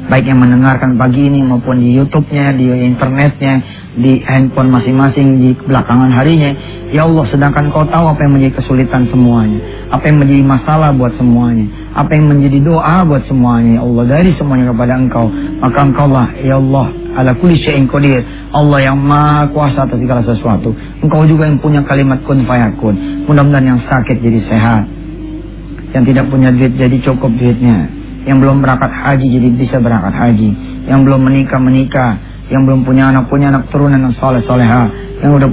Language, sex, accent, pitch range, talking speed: English, male, Indonesian, 125-145 Hz, 165 wpm